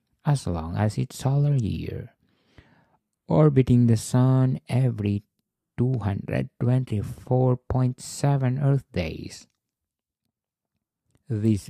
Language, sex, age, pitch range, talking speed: English, male, 50-69, 100-130 Hz, 70 wpm